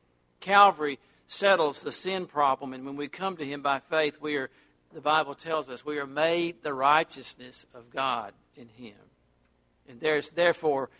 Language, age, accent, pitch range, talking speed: English, 60-79, American, 135-170 Hz, 170 wpm